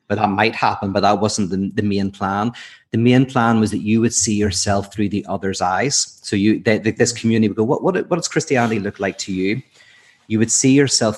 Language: English